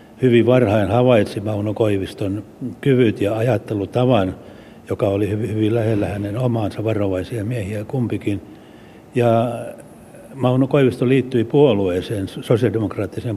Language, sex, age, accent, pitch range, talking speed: Finnish, male, 60-79, native, 100-120 Hz, 110 wpm